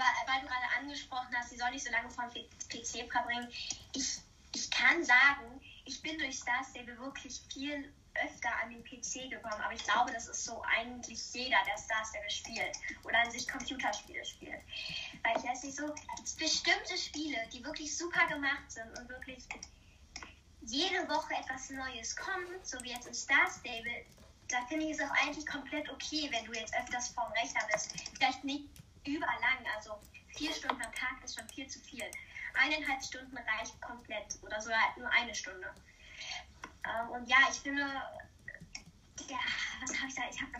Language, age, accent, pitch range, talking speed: German, 10-29, German, 240-300 Hz, 175 wpm